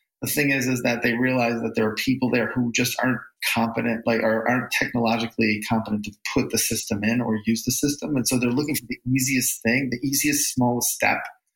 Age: 40-59